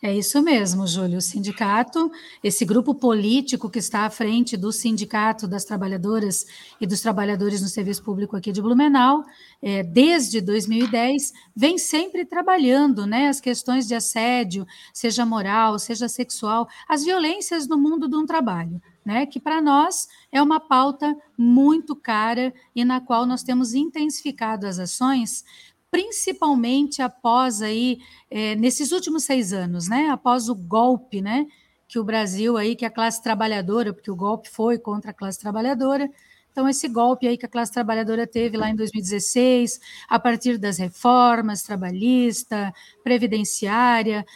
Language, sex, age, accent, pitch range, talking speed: Portuguese, female, 40-59, Brazilian, 215-270 Hz, 150 wpm